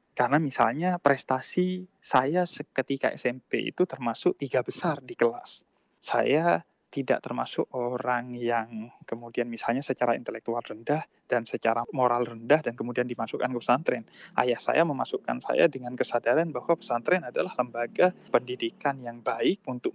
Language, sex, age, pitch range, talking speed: Indonesian, male, 20-39, 120-160 Hz, 135 wpm